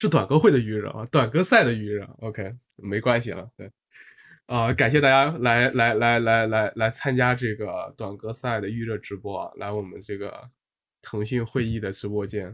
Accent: native